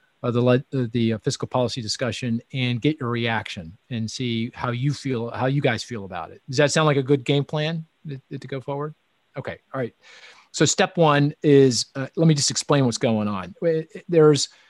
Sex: male